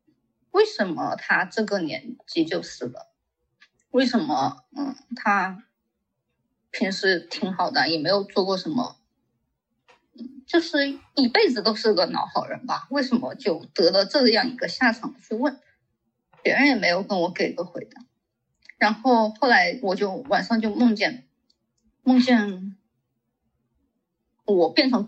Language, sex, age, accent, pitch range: Chinese, female, 20-39, native, 215-280 Hz